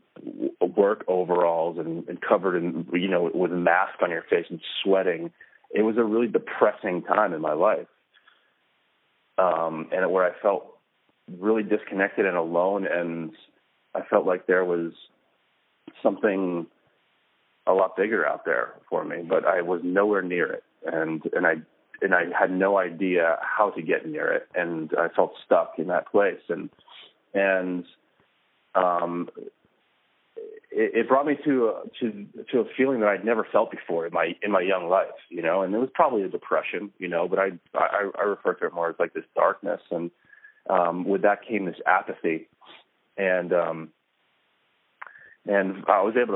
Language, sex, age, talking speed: English, male, 30-49, 170 wpm